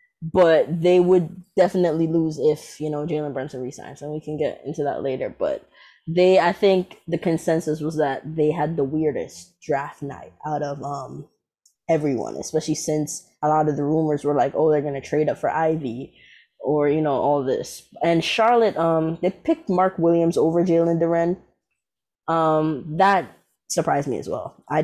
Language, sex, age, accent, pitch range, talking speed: English, female, 10-29, American, 155-180 Hz, 180 wpm